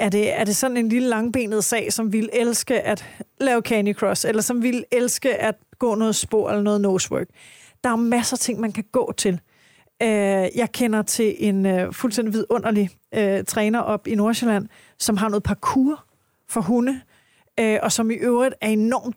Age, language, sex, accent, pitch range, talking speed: 30-49, Danish, female, native, 205-235 Hz, 180 wpm